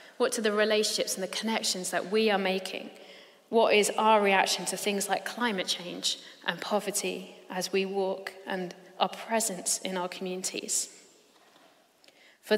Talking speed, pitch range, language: 155 wpm, 190-225 Hz, English